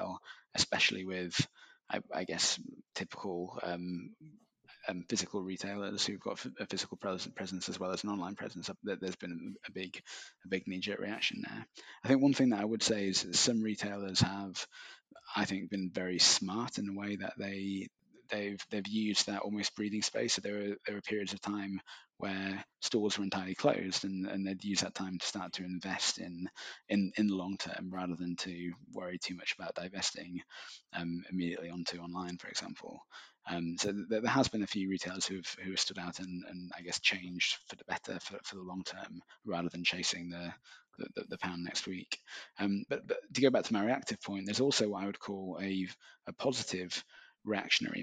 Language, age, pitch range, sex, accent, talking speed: English, 20-39, 90-100 Hz, male, British, 195 wpm